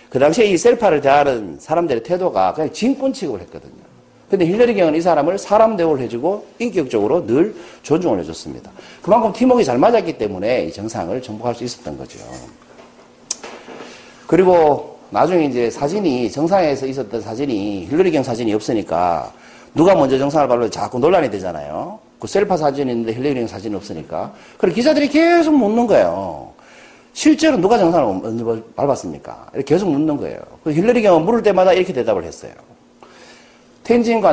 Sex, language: male, Korean